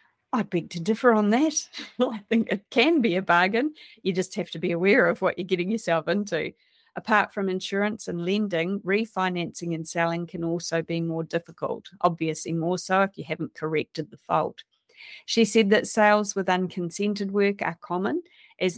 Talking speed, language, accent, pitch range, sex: 180 wpm, English, Australian, 170-205 Hz, female